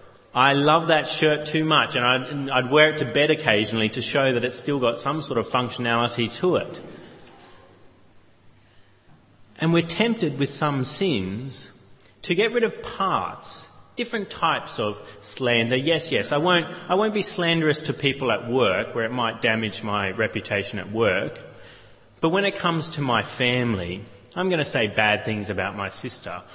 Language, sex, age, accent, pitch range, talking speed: English, male, 30-49, Australian, 105-150 Hz, 170 wpm